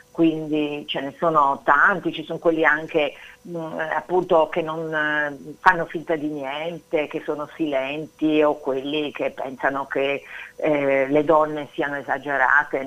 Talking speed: 145 wpm